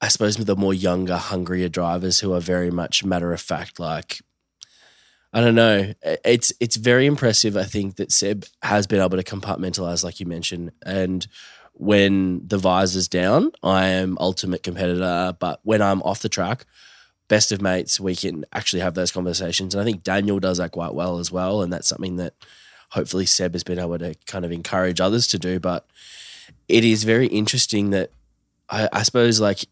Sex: male